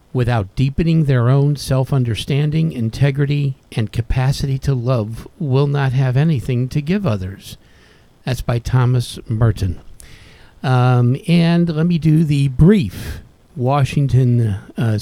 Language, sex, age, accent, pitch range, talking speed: English, male, 50-69, American, 110-135 Hz, 120 wpm